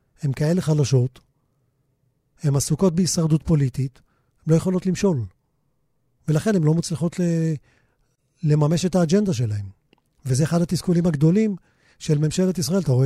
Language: Hebrew